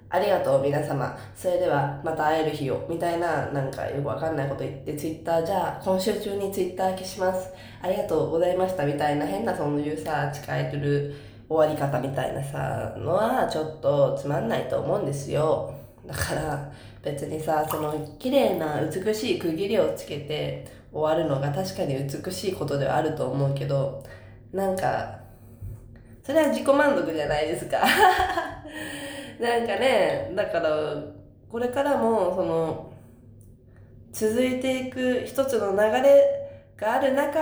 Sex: female